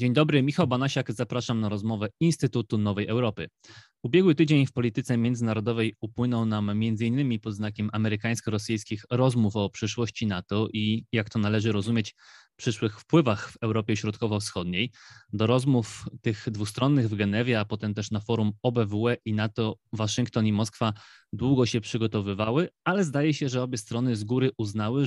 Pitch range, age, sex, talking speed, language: 110-125 Hz, 20-39, male, 155 wpm, Polish